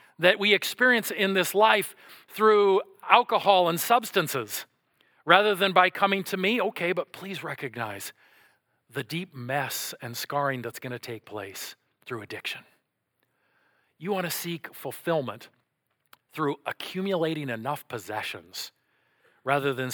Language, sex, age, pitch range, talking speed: English, male, 40-59, 130-185 Hz, 130 wpm